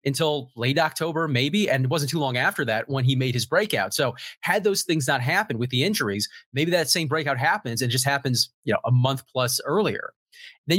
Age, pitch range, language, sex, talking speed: 30-49, 130-160 Hz, English, male, 220 wpm